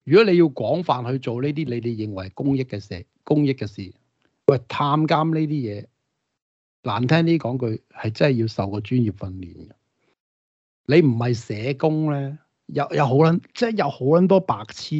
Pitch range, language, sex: 110-145 Hz, Chinese, male